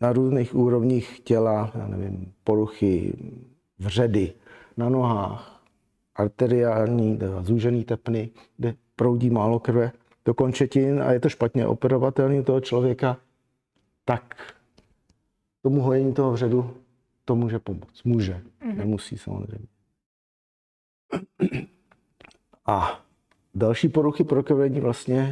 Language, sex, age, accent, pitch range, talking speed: Czech, male, 50-69, native, 110-130 Hz, 100 wpm